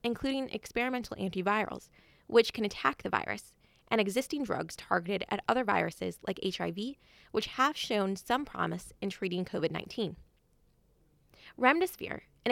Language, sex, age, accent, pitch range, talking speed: English, female, 20-39, American, 200-275 Hz, 130 wpm